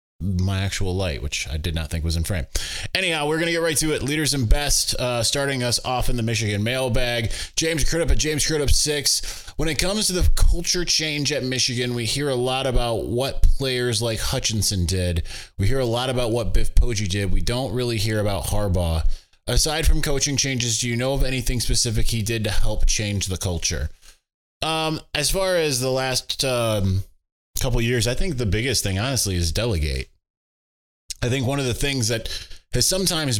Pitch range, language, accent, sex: 95-130 Hz, English, American, male